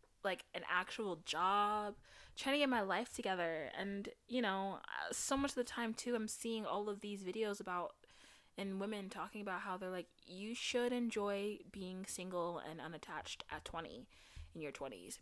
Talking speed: 180 wpm